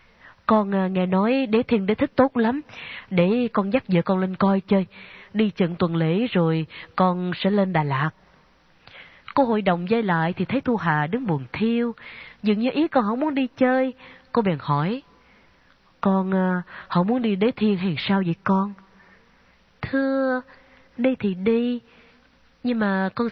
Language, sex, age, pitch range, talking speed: Vietnamese, female, 20-39, 170-230 Hz, 170 wpm